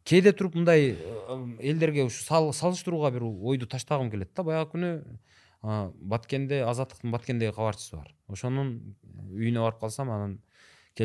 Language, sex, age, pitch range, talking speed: Russian, male, 30-49, 105-160 Hz, 195 wpm